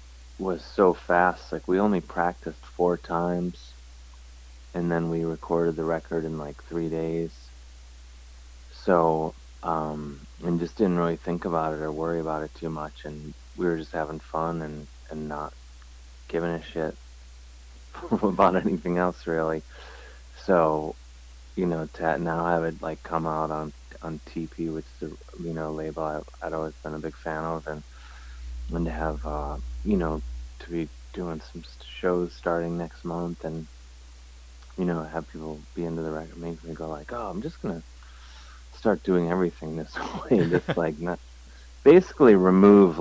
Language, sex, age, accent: English, male, 30-49, American